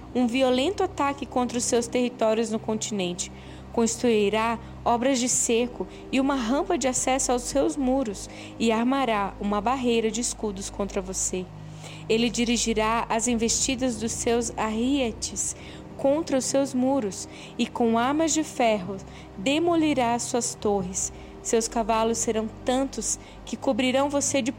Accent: Brazilian